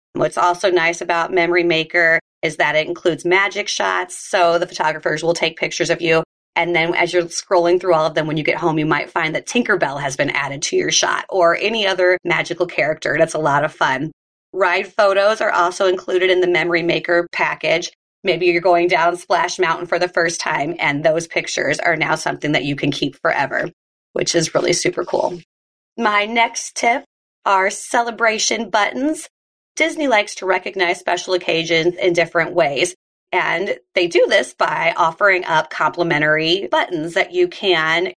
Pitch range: 165-200 Hz